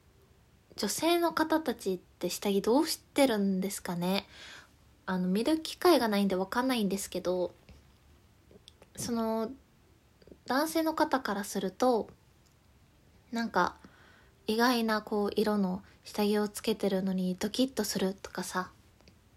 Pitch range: 185-255 Hz